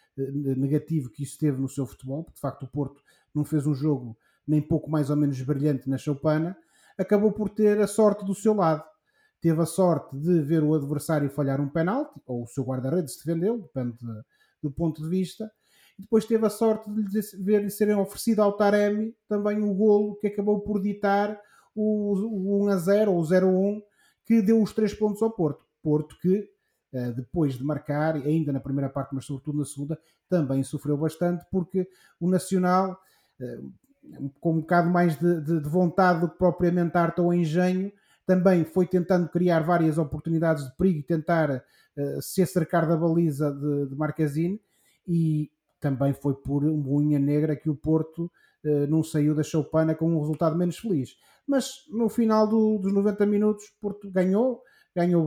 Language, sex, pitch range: Portuguese, male, 150-205 Hz